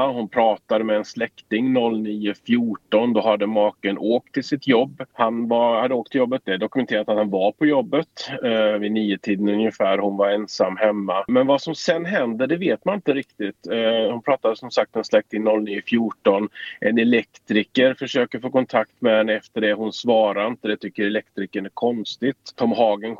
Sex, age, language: male, 30-49, Swedish